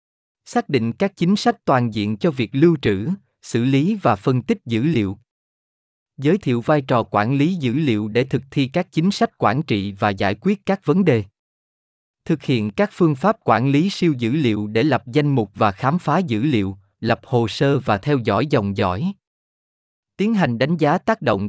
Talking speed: 205 wpm